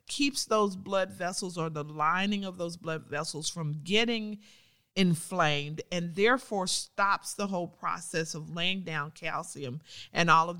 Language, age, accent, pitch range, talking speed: English, 40-59, American, 160-200 Hz, 155 wpm